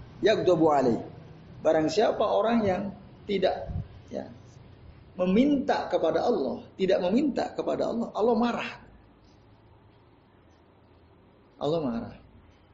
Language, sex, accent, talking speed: Indonesian, male, native, 80 wpm